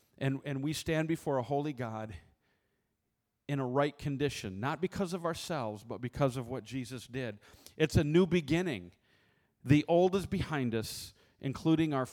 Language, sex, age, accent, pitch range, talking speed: English, male, 40-59, American, 130-175 Hz, 165 wpm